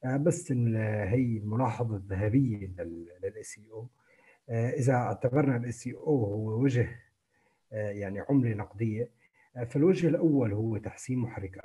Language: Arabic